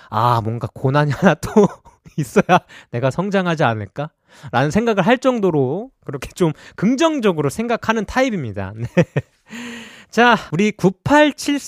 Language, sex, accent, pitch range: Korean, male, native, 140-225 Hz